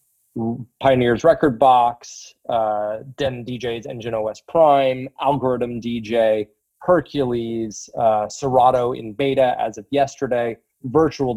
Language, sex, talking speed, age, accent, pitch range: English, male, 105 wpm, 30-49, American, 110-130 Hz